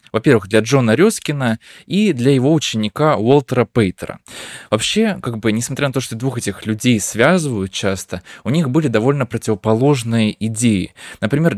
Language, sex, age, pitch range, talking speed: Russian, male, 20-39, 110-145 Hz, 150 wpm